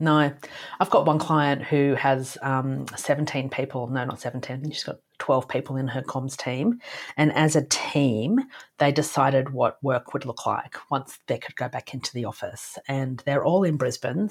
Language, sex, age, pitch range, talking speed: English, female, 30-49, 130-150 Hz, 190 wpm